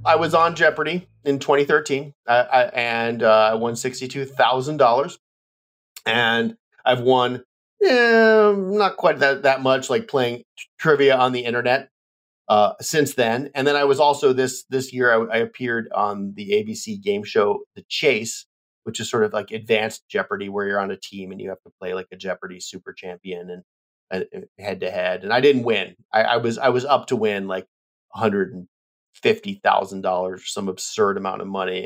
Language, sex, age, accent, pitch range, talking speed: English, male, 30-49, American, 100-150 Hz, 190 wpm